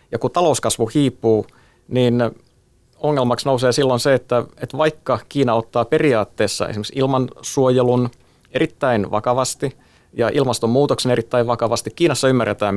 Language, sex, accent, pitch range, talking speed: Finnish, male, native, 110-135 Hz, 115 wpm